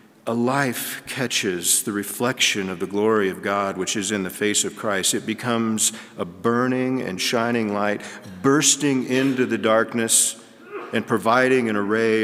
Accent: American